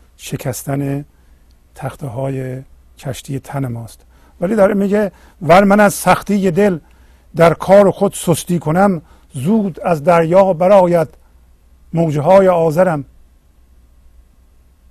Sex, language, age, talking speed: male, Persian, 50-69, 105 wpm